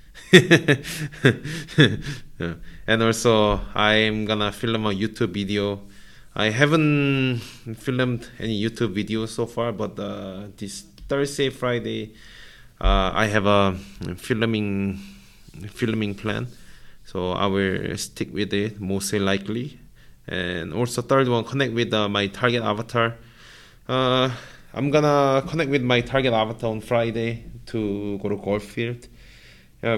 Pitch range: 100-120 Hz